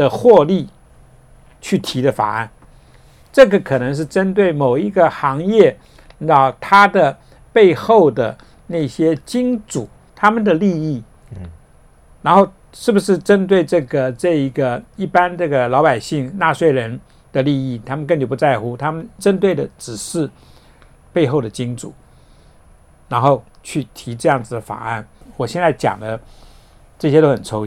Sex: male